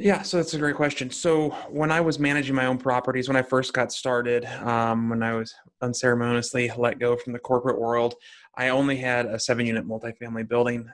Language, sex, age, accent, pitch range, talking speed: English, male, 20-39, American, 115-130 Hz, 210 wpm